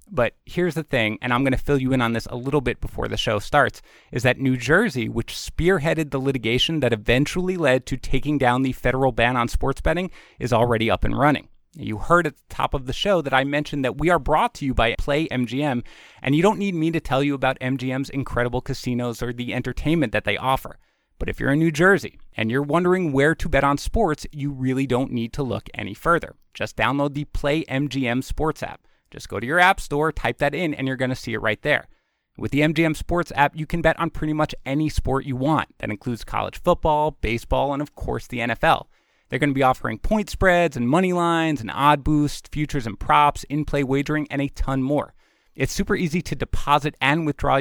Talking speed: 230 wpm